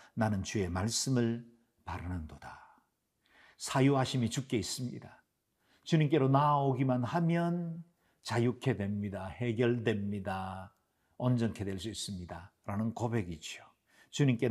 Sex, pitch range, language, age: male, 100-135 Hz, Korean, 50-69